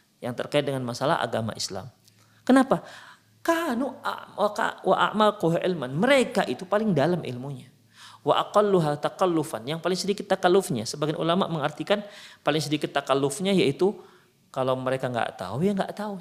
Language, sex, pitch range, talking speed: Indonesian, male, 130-195 Hz, 120 wpm